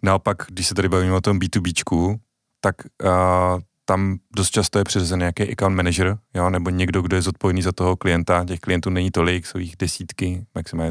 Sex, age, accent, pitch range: male, 30-49, native, 90-100 Hz